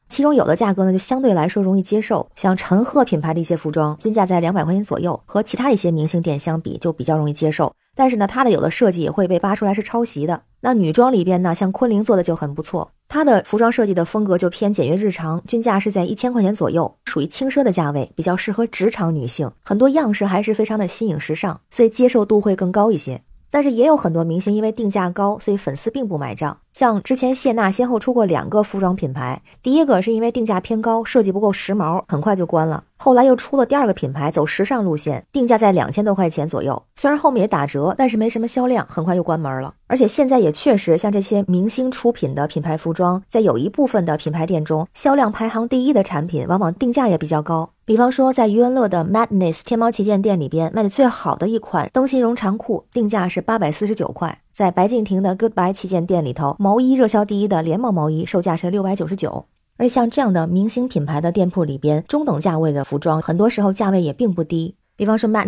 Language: Chinese